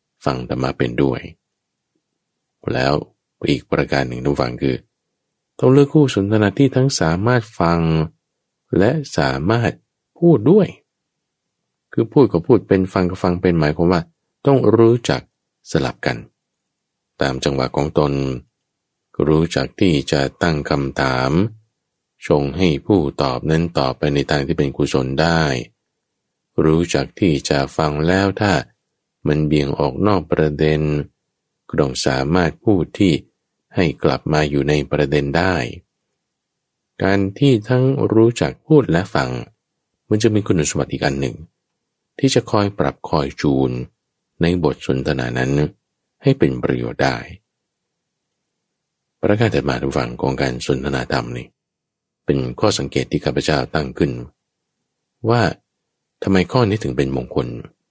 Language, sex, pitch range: English, male, 70-105 Hz